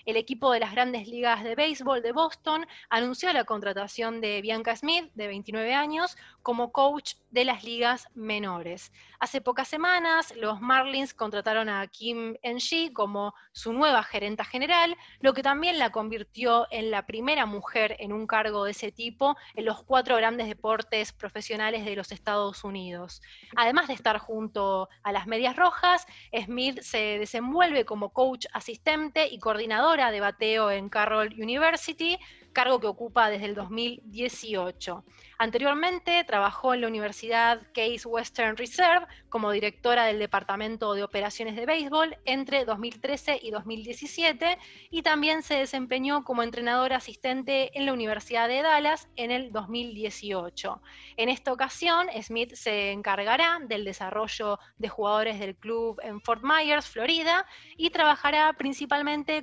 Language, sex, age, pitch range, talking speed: Spanish, female, 20-39, 215-280 Hz, 150 wpm